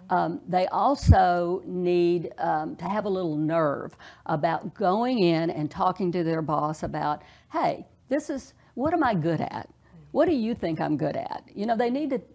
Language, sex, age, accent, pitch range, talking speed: English, female, 60-79, American, 160-205 Hz, 190 wpm